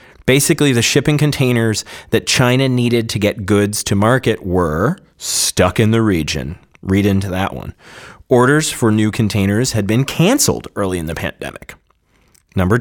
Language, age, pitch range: English, 30-49, 90-130 Hz